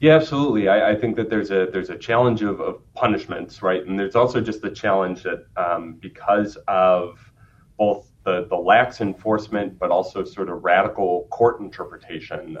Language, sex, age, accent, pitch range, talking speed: English, male, 30-49, American, 90-110 Hz, 175 wpm